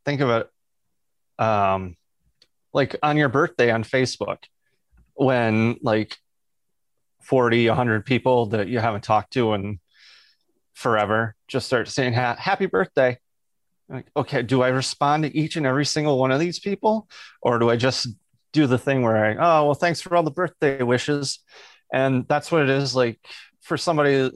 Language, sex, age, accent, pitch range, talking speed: English, male, 30-49, American, 115-140 Hz, 165 wpm